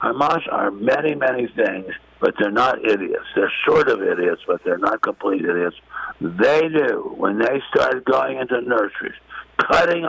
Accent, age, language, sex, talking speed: American, 60-79, English, male, 160 wpm